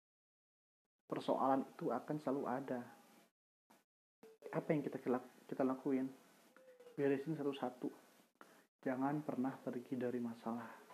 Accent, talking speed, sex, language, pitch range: native, 95 wpm, male, Indonesian, 125-155 Hz